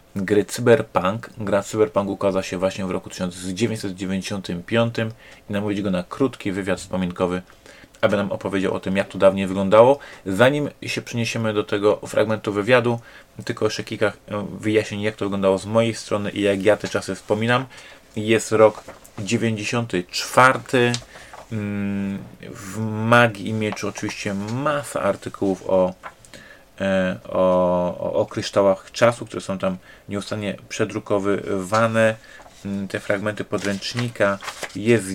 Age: 30-49